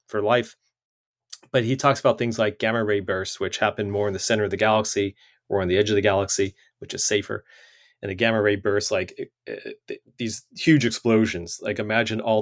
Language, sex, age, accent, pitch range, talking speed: English, male, 30-49, American, 100-120 Hz, 215 wpm